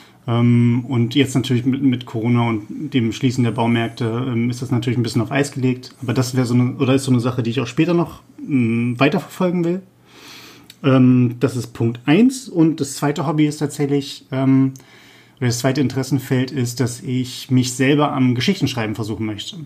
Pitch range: 120-140 Hz